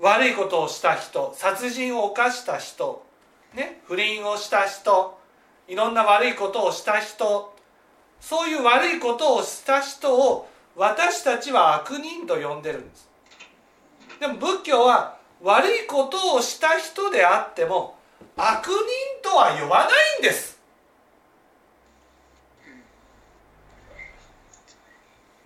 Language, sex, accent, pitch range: Japanese, male, native, 245-400 Hz